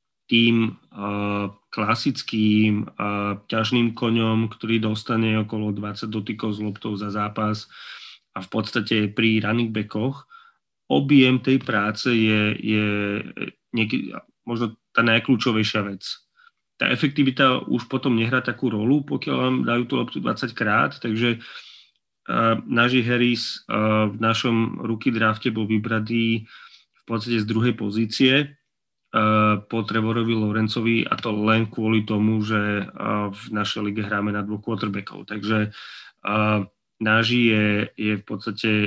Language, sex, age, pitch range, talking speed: Slovak, male, 30-49, 105-120 Hz, 135 wpm